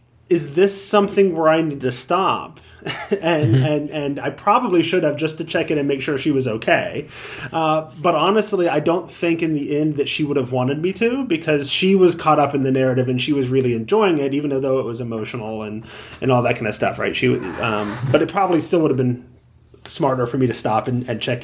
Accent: American